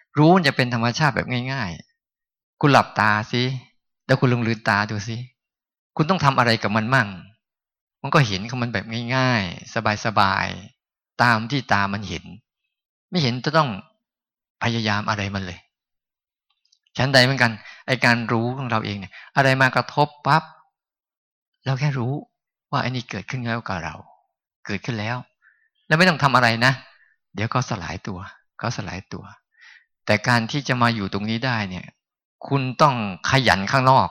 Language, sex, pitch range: Thai, male, 110-140 Hz